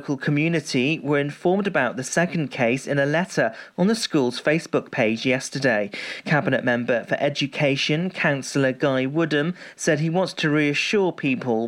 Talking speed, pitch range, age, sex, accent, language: 150 wpm, 135-165 Hz, 40-59, male, British, English